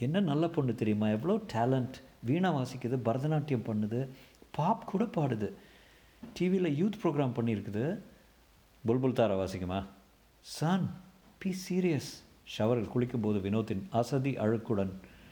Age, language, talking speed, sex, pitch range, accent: 50-69, Tamil, 110 wpm, male, 100-135 Hz, native